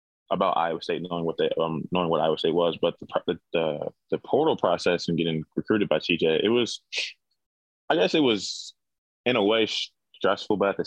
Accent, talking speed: American, 200 wpm